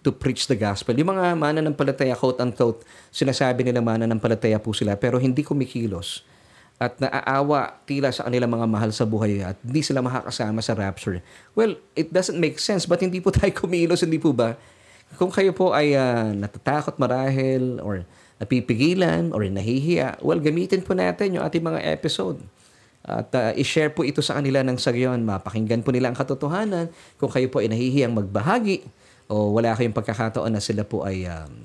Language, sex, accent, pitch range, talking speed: Filipino, male, native, 110-150 Hz, 185 wpm